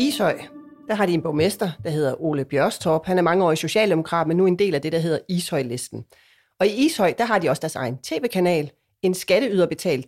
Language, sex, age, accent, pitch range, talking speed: Danish, female, 30-49, native, 150-200 Hz, 225 wpm